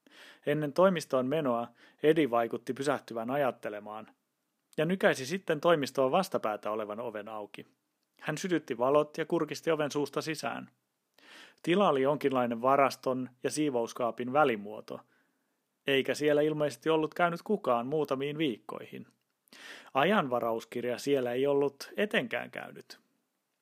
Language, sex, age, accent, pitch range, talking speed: Finnish, male, 30-49, native, 120-150 Hz, 110 wpm